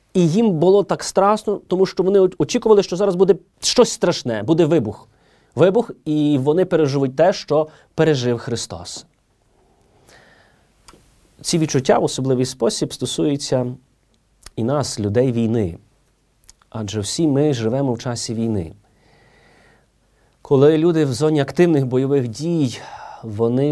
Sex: male